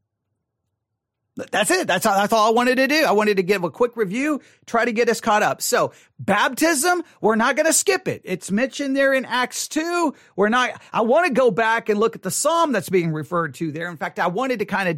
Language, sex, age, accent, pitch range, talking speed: English, male, 40-59, American, 180-245 Hz, 245 wpm